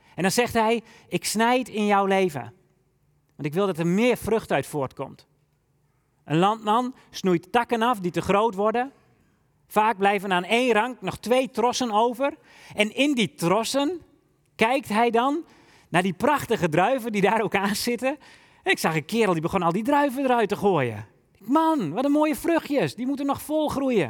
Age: 40-59